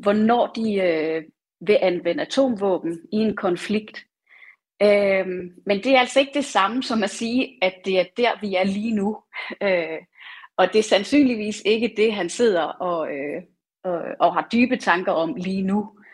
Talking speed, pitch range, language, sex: 175 wpm, 180-230 Hz, Danish, female